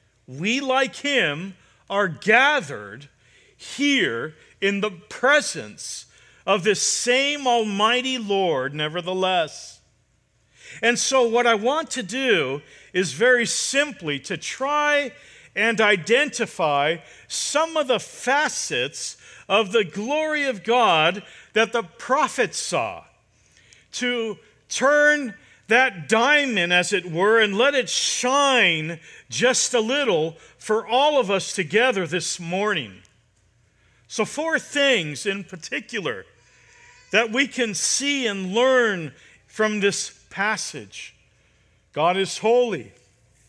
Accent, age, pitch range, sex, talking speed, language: American, 50-69, 160-245 Hz, male, 110 wpm, English